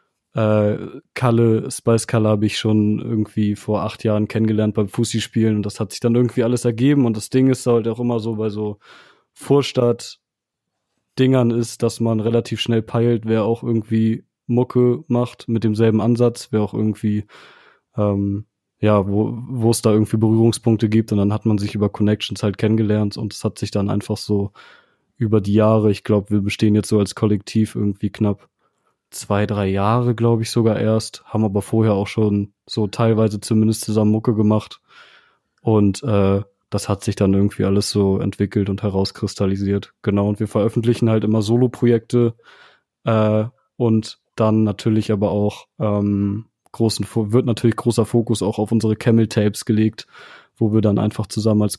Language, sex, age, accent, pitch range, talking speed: German, male, 20-39, German, 105-115 Hz, 170 wpm